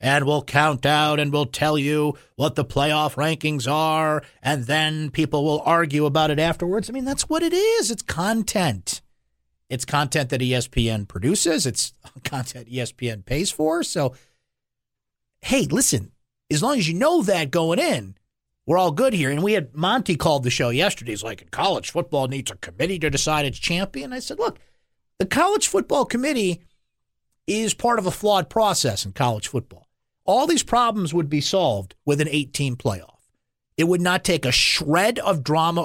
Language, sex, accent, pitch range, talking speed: English, male, American, 130-180 Hz, 180 wpm